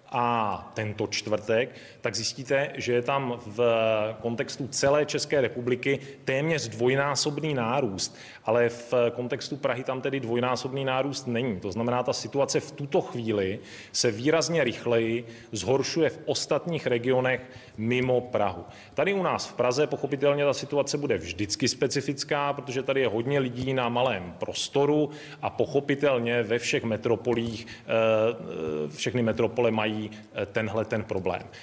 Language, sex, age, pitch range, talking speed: Czech, male, 30-49, 115-140 Hz, 135 wpm